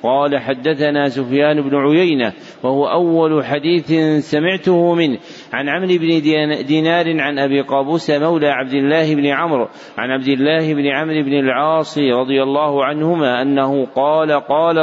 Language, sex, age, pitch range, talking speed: Arabic, male, 50-69, 135-155 Hz, 140 wpm